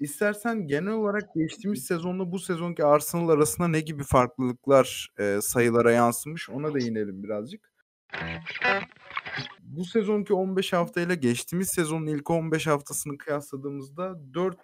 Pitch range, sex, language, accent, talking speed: 120-160 Hz, male, Turkish, native, 125 wpm